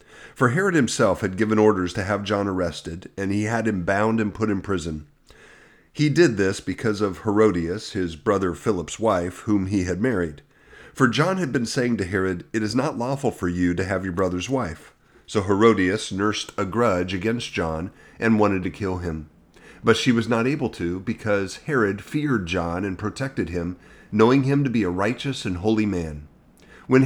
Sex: male